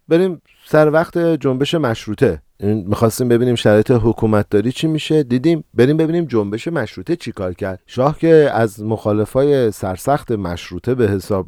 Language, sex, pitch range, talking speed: Persian, male, 100-135 Hz, 145 wpm